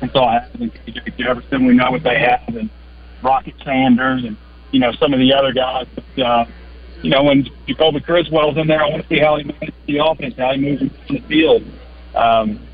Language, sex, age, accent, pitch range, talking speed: English, male, 40-59, American, 125-150 Hz, 205 wpm